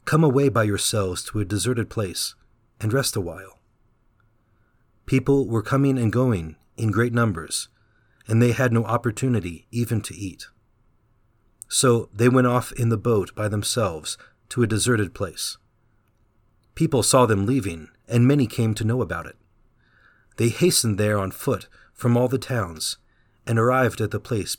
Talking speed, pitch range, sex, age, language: 160 wpm, 105-120 Hz, male, 40-59, English